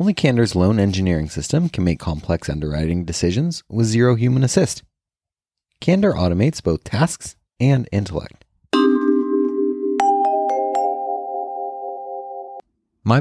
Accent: American